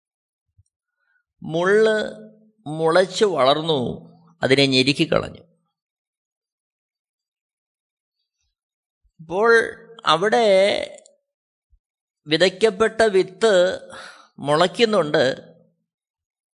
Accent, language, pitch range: native, Malayalam, 170-225 Hz